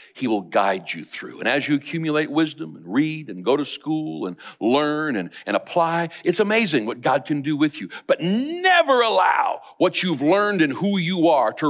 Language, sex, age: English, male, 60-79